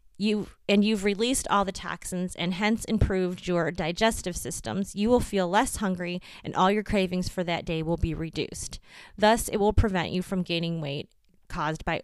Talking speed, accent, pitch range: 190 wpm, American, 170-200 Hz